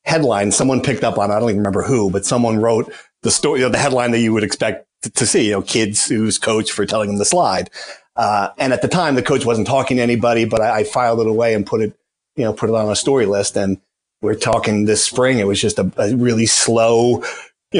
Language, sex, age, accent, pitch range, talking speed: English, male, 40-59, American, 115-145 Hz, 265 wpm